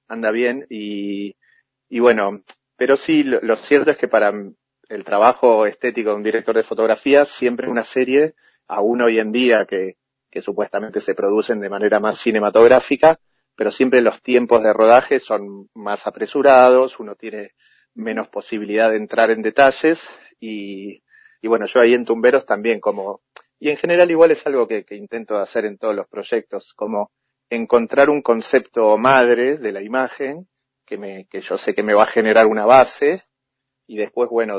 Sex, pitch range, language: male, 110-135 Hz, Spanish